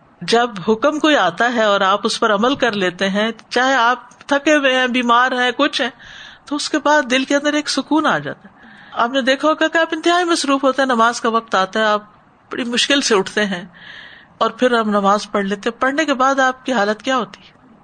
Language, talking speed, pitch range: Urdu, 235 wpm, 205-285 Hz